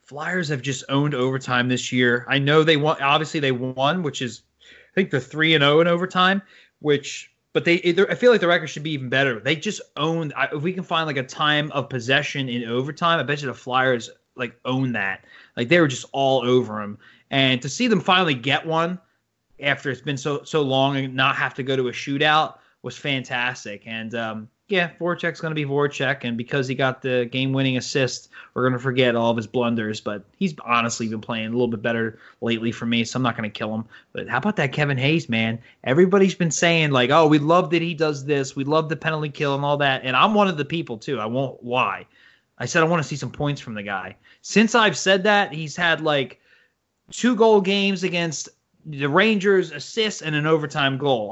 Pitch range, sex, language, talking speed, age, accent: 125-160 Hz, male, English, 230 wpm, 20-39, American